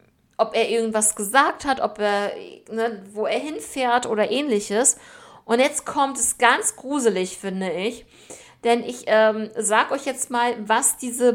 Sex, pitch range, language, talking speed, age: female, 205-255 Hz, German, 160 wpm, 50-69